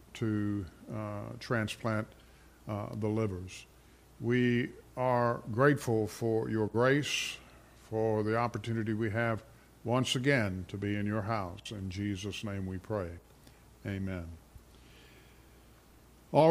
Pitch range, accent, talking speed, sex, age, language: 105-130 Hz, American, 115 wpm, male, 50-69, English